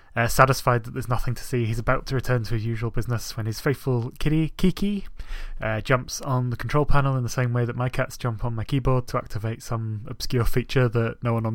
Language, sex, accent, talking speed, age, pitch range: English, male, British, 240 wpm, 20-39, 115-130 Hz